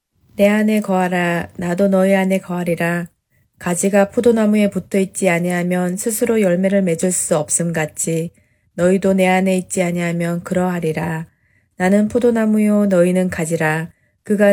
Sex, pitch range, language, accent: female, 175-215 Hz, Korean, native